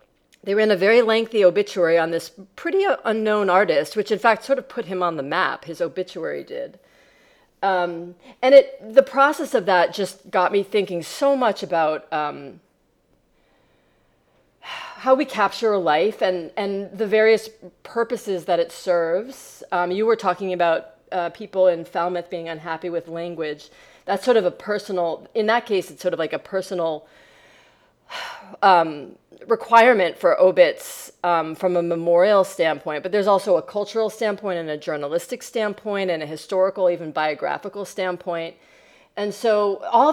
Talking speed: 155 wpm